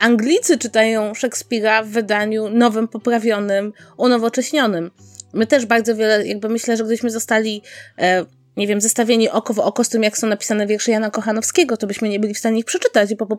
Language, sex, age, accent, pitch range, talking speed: Polish, female, 20-39, native, 210-265 Hz, 185 wpm